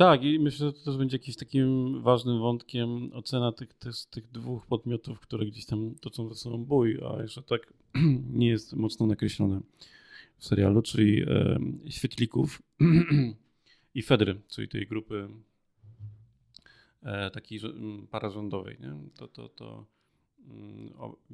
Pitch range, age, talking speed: 105-120 Hz, 40-59, 140 wpm